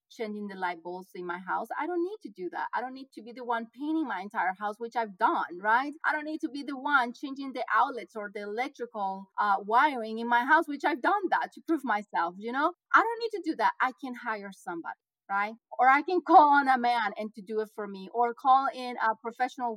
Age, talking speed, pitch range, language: 30-49, 255 wpm, 195-260 Hz, English